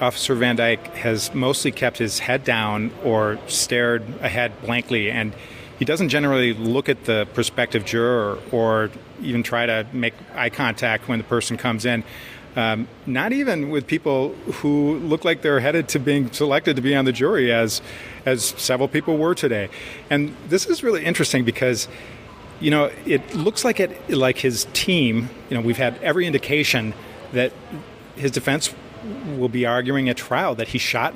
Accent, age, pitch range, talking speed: American, 40-59, 120-145 Hz, 175 wpm